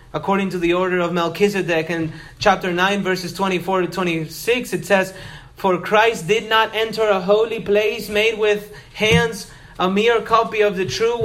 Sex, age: male, 30-49